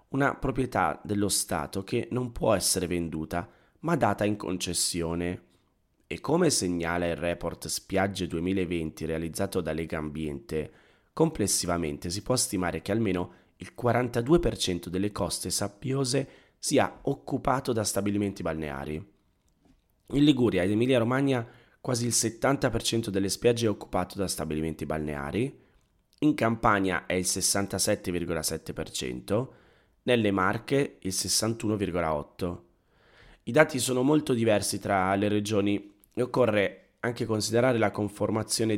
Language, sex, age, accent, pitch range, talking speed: Italian, male, 20-39, native, 90-115 Hz, 120 wpm